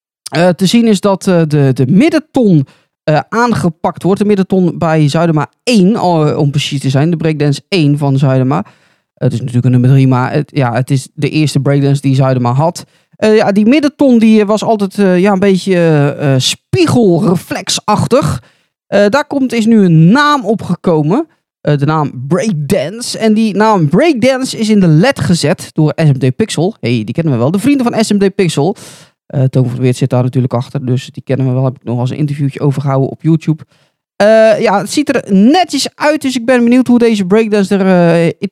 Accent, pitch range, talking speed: Dutch, 140-205 Hz, 205 wpm